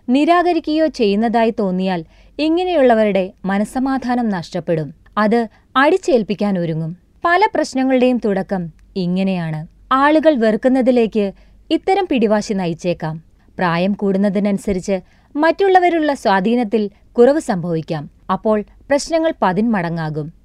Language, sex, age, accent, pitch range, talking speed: Malayalam, female, 20-39, native, 195-280 Hz, 80 wpm